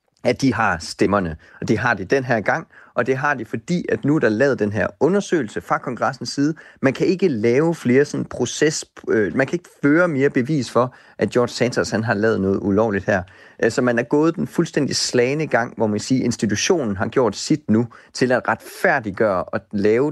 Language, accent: Danish, native